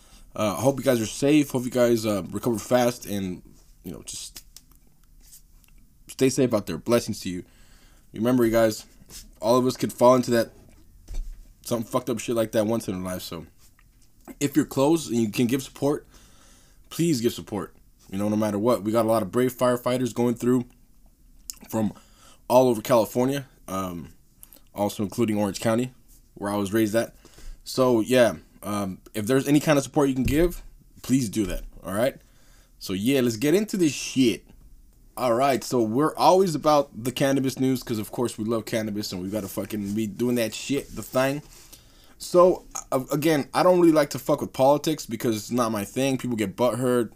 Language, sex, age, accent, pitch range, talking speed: English, male, 20-39, American, 110-130 Hz, 190 wpm